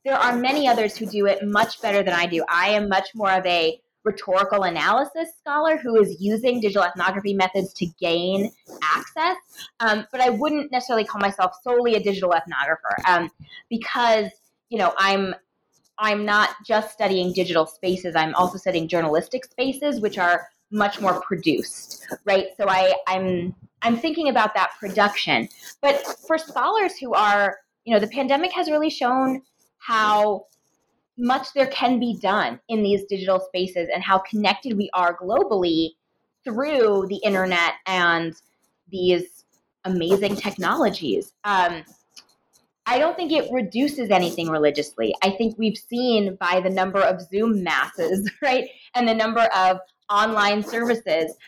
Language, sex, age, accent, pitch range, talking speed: English, female, 20-39, American, 185-245 Hz, 155 wpm